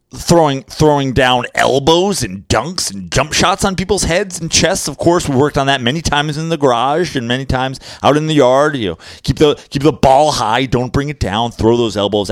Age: 30-49